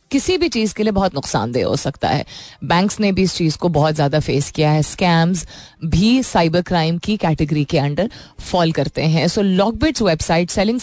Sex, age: female, 30-49